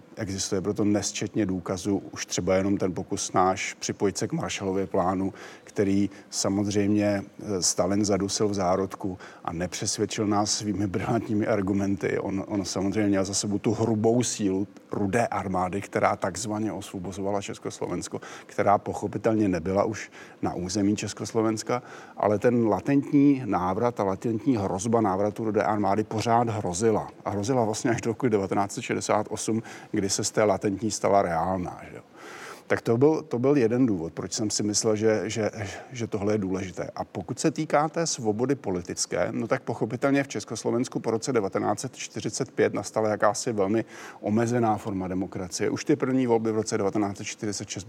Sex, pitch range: male, 100-115 Hz